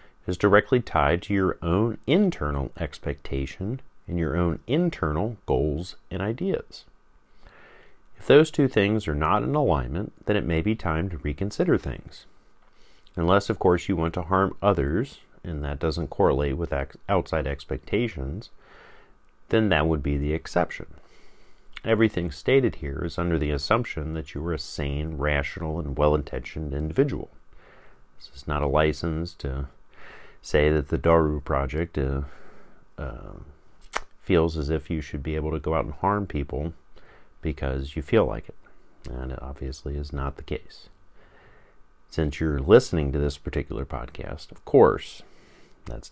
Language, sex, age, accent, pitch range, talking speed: English, male, 40-59, American, 75-95 Hz, 150 wpm